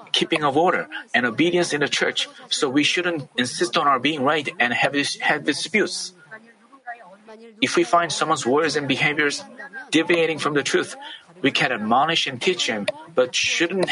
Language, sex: Korean, male